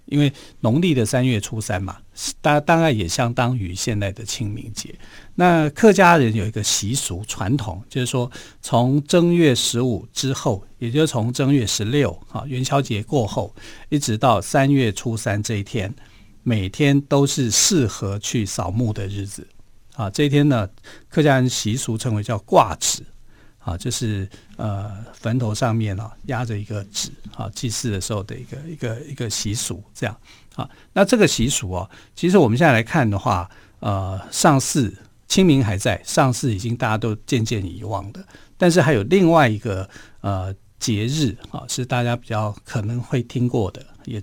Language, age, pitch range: Chinese, 50-69, 105-135 Hz